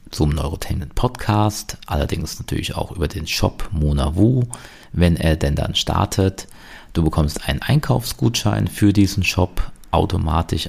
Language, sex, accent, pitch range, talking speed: German, male, German, 80-95 Hz, 135 wpm